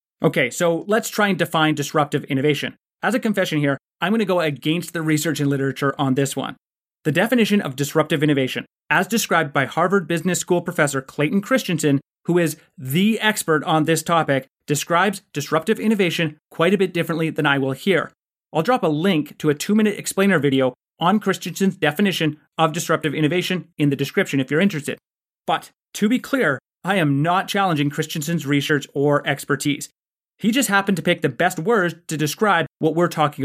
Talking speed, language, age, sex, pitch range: 185 wpm, English, 30-49, male, 145-190 Hz